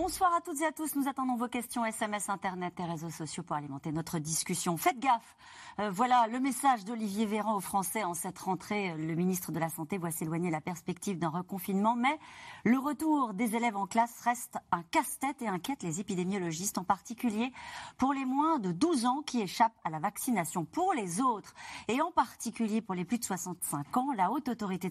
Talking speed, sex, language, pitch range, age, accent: 205 wpm, female, French, 180-265 Hz, 40-59, French